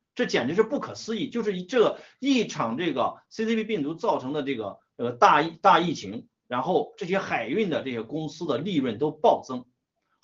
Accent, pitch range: native, 150-220 Hz